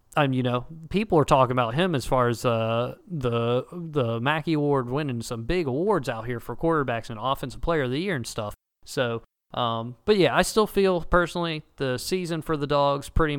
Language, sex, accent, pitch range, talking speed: English, male, American, 120-155 Hz, 205 wpm